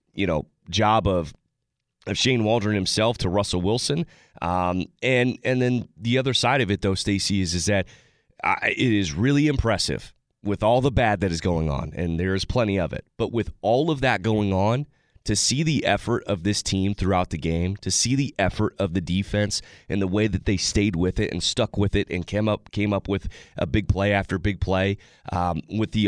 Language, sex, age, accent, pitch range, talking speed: English, male, 30-49, American, 90-110 Hz, 220 wpm